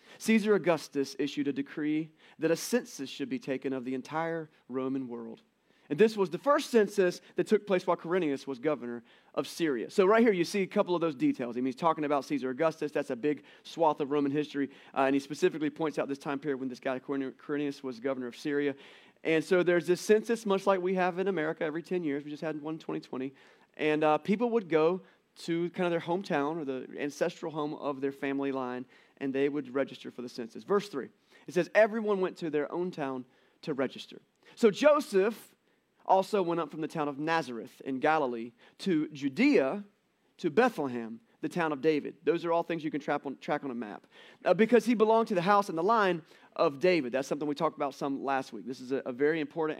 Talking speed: 225 wpm